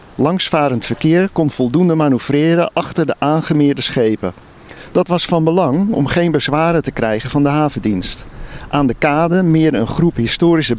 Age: 50-69